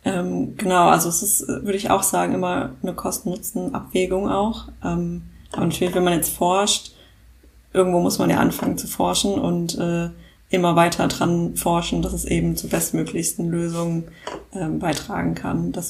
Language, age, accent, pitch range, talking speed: German, 20-39, German, 165-190 Hz, 145 wpm